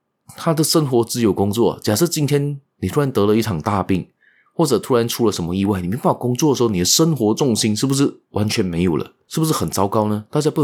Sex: male